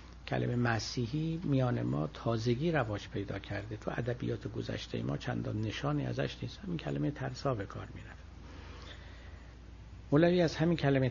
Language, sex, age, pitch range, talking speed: Persian, male, 60-79, 90-140 Hz, 145 wpm